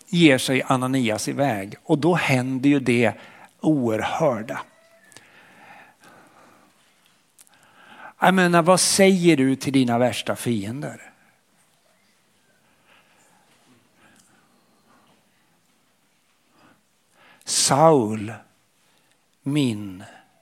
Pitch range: 130-180 Hz